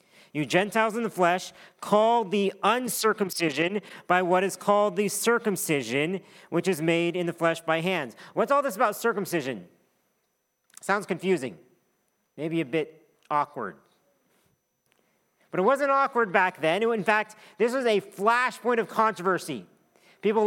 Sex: male